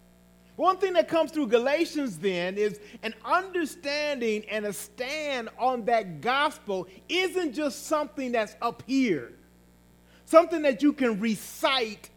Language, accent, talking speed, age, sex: English, American, 135 wpm, 40-59, male